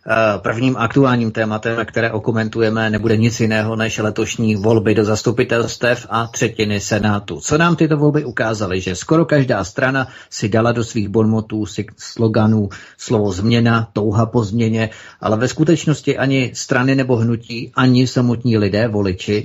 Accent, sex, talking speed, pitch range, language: native, male, 150 wpm, 105-120 Hz, Czech